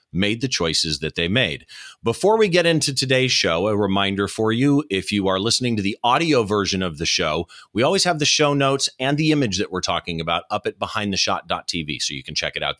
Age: 40-59